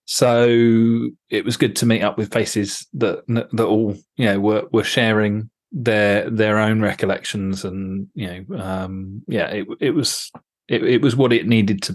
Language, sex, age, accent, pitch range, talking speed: English, male, 30-49, British, 105-125 Hz, 180 wpm